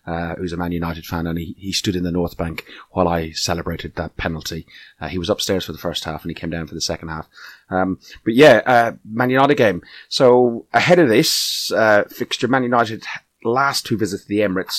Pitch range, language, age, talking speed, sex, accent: 95-115 Hz, English, 30-49, 225 wpm, male, British